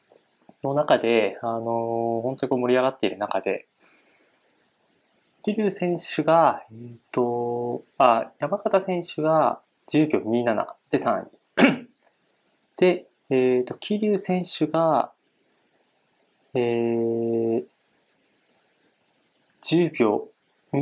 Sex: male